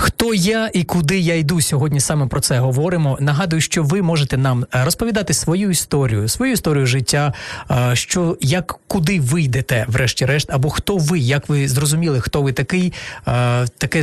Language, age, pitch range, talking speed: Ukrainian, 30-49, 130-165 Hz, 160 wpm